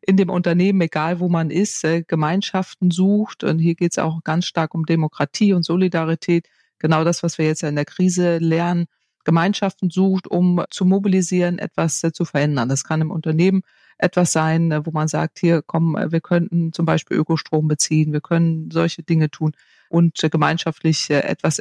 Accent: German